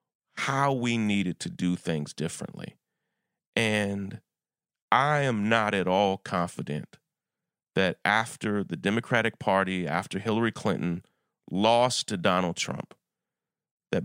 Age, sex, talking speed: 40-59, male, 115 wpm